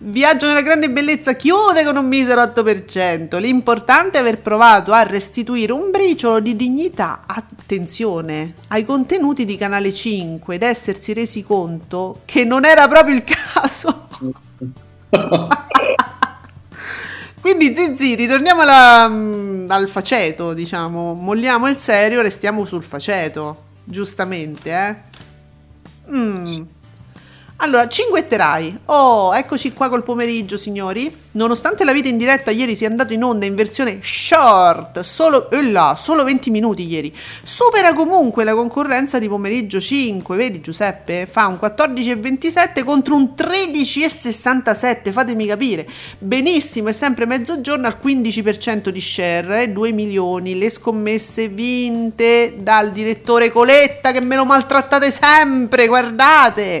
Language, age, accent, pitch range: Italian, 40-59, native, 200-270 Hz